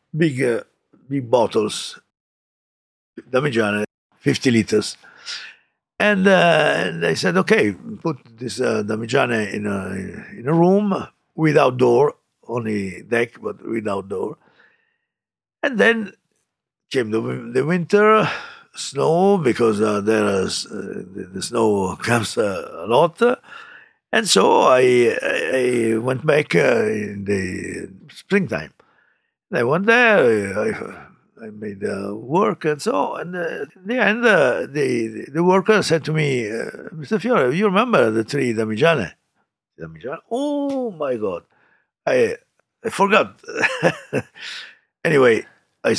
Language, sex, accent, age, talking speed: English, male, Italian, 60-79, 125 wpm